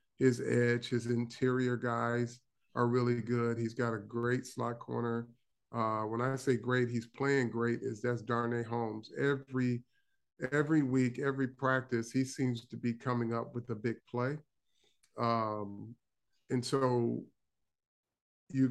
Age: 40-59